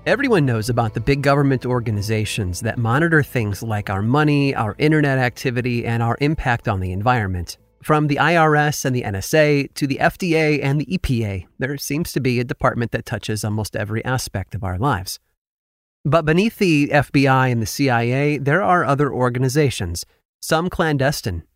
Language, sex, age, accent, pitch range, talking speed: English, male, 30-49, American, 115-145 Hz, 170 wpm